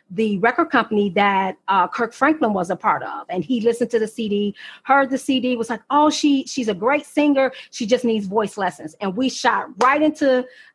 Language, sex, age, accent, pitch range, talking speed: English, female, 40-59, American, 210-260 Hz, 210 wpm